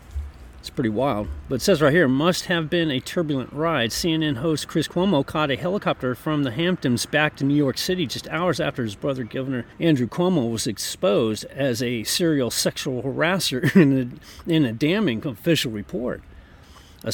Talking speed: 180 wpm